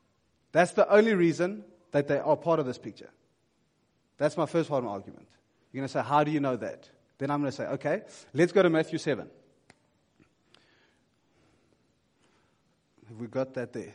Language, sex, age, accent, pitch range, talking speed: English, male, 30-49, South African, 140-195 Hz, 170 wpm